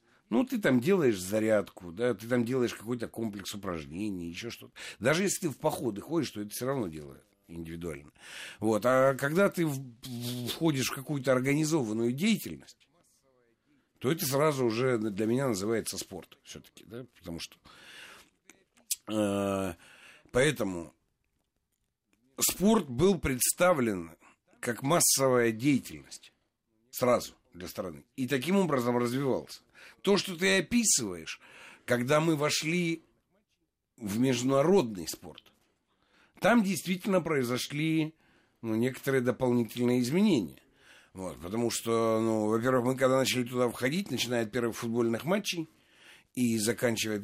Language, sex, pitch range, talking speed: Russian, male, 110-140 Hz, 120 wpm